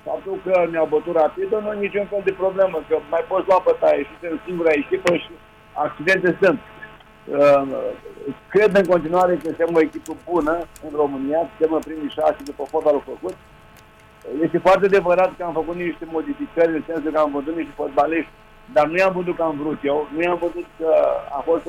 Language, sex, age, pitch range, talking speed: Romanian, male, 50-69, 155-185 Hz, 190 wpm